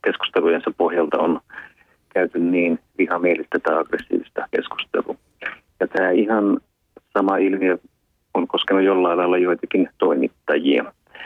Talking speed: 110 wpm